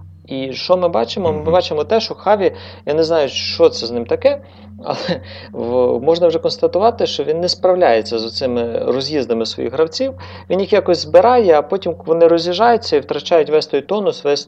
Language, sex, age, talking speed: Ukrainian, male, 30-49, 180 wpm